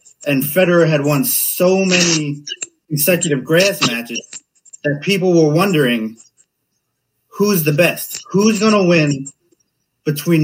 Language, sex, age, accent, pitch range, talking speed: English, male, 30-49, American, 150-195 Hz, 120 wpm